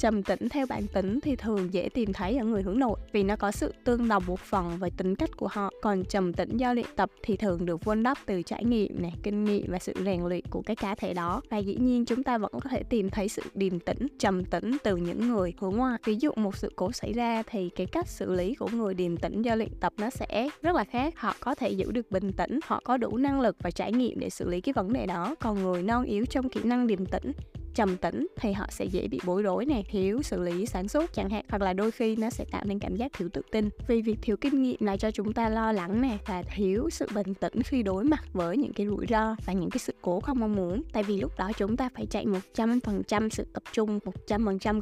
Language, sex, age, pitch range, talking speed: Vietnamese, female, 20-39, 190-240 Hz, 275 wpm